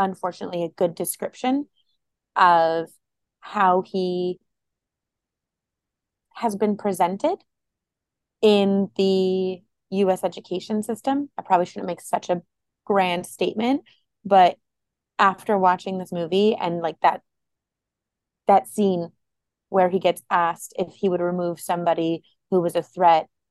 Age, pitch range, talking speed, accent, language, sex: 30-49, 175-200 Hz, 115 wpm, American, English, female